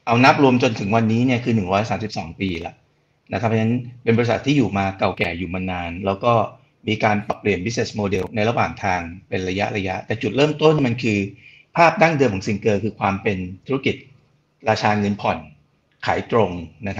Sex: male